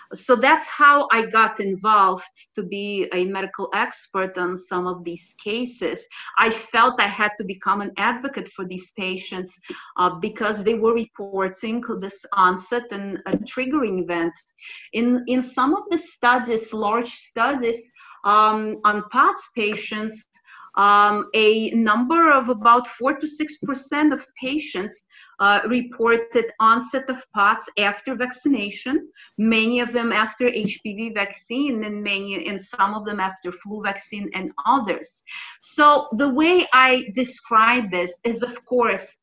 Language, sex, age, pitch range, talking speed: English, female, 40-59, 200-250 Hz, 140 wpm